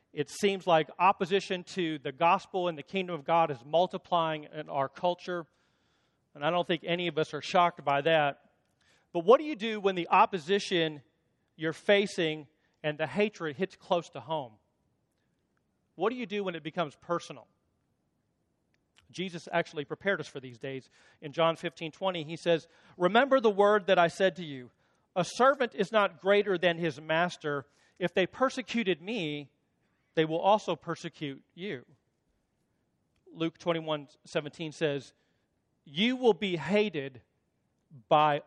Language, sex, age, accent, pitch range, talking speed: English, male, 40-59, American, 150-190 Hz, 155 wpm